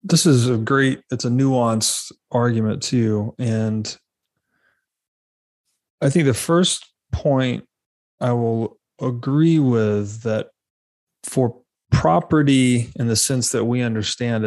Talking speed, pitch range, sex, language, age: 115 wpm, 110-125 Hz, male, English, 30-49